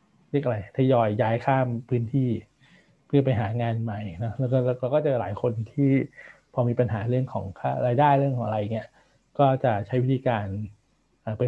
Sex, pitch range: male, 115-140 Hz